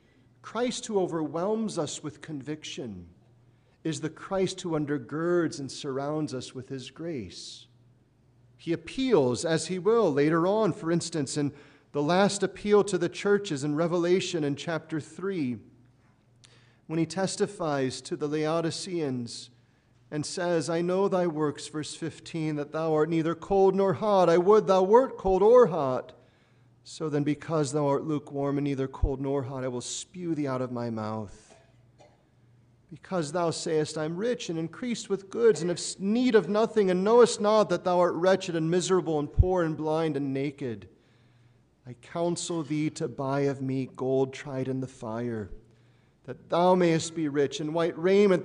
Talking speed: 165 wpm